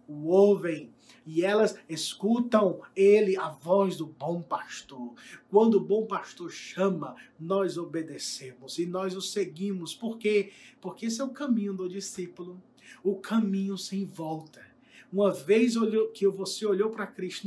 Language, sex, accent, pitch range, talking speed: Portuguese, male, Brazilian, 190-220 Hz, 145 wpm